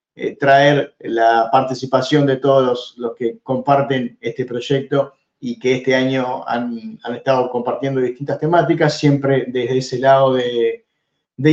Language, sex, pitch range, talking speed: Spanish, male, 120-145 Hz, 145 wpm